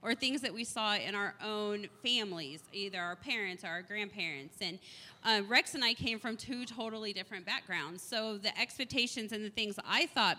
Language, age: English, 30-49